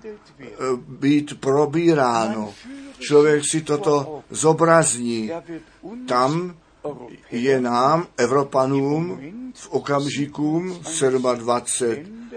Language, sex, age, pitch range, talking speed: Czech, male, 50-69, 130-160 Hz, 65 wpm